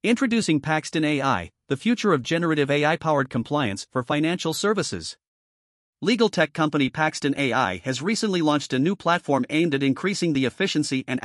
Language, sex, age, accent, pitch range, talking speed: English, male, 50-69, American, 130-165 Hz, 155 wpm